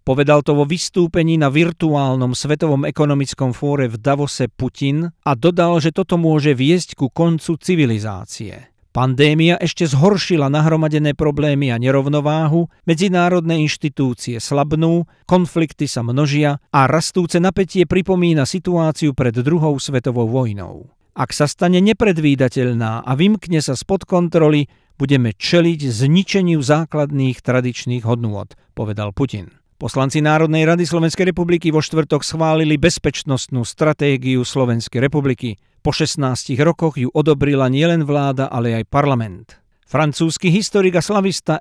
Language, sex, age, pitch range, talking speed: Slovak, male, 50-69, 130-170 Hz, 125 wpm